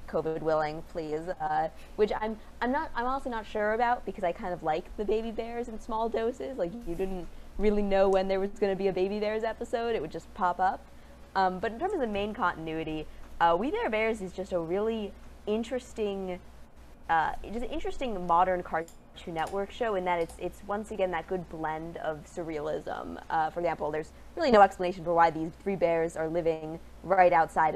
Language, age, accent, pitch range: English, 20-39, American, 165-220 Hz